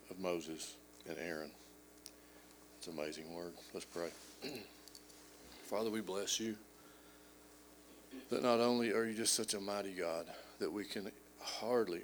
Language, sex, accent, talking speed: English, male, American, 140 wpm